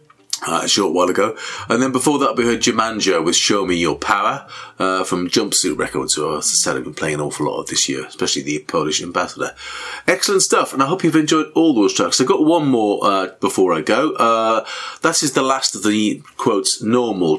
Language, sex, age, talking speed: English, male, 40-59, 220 wpm